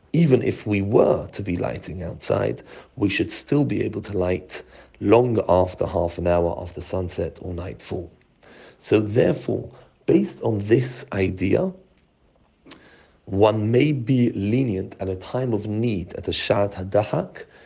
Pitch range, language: 90-110 Hz, English